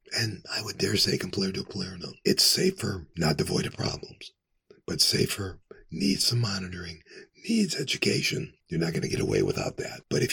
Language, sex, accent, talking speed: English, male, American, 170 wpm